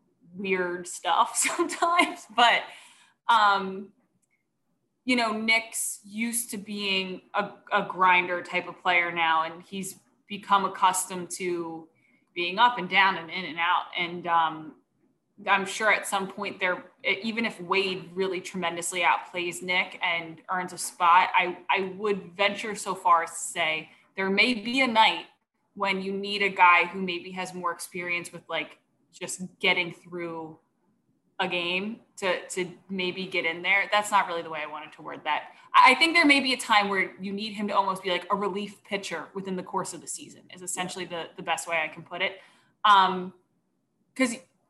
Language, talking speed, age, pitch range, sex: English, 175 wpm, 20-39, 175-205 Hz, female